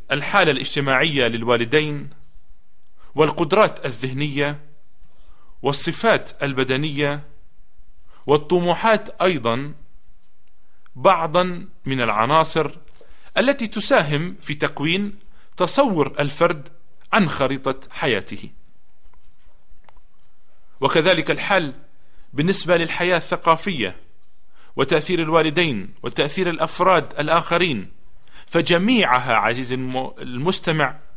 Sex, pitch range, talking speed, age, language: male, 140-180 Hz, 65 wpm, 40-59, Arabic